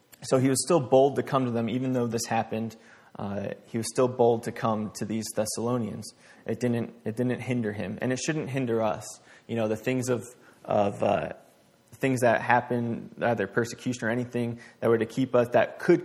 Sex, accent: male, American